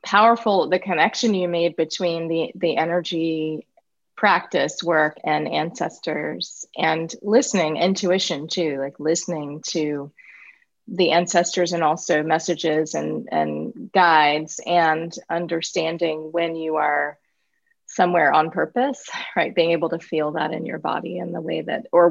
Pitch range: 160-190 Hz